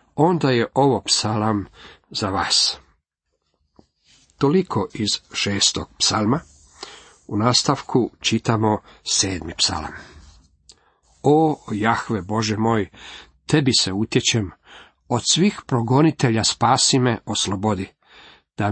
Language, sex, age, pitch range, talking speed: Croatian, male, 50-69, 105-140 Hz, 95 wpm